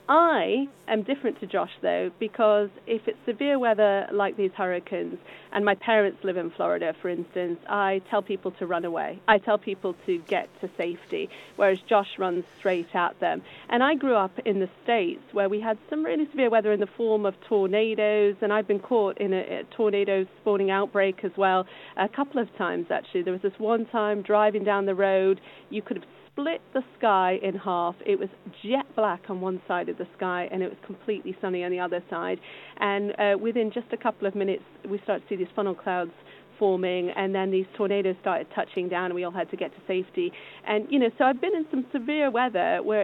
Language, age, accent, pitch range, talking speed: English, 40-59, British, 185-220 Hz, 215 wpm